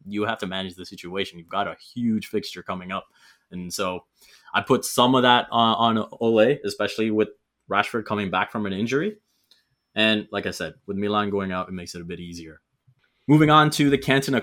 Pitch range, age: 95-115 Hz, 20-39